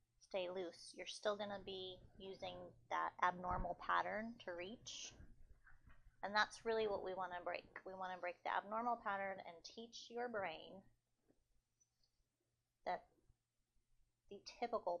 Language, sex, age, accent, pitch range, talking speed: English, female, 30-49, American, 175-200 Hz, 140 wpm